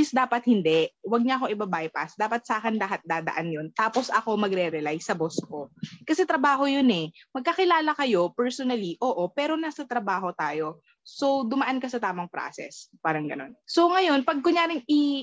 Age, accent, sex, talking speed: 20-39, native, female, 175 wpm